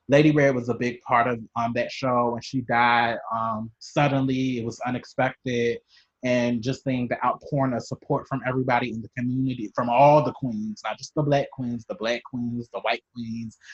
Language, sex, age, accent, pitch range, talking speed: English, male, 20-39, American, 115-130 Hz, 195 wpm